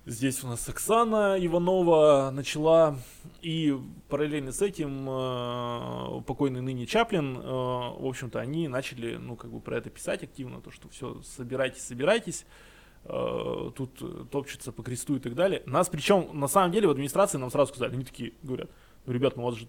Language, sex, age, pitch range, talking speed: Russian, male, 20-39, 120-150 Hz, 170 wpm